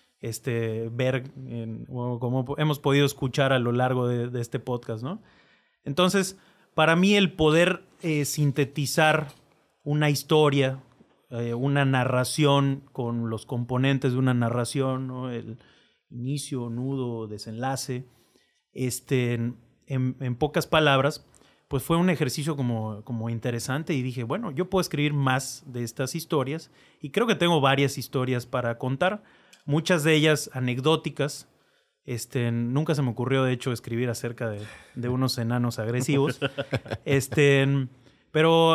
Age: 30-49